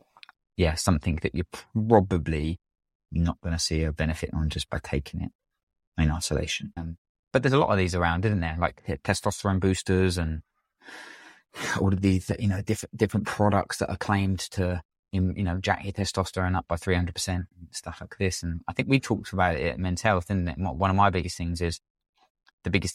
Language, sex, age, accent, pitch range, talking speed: English, male, 20-39, British, 85-100 Hz, 195 wpm